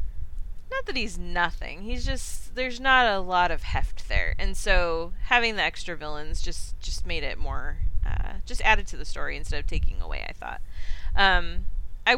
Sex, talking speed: female, 185 wpm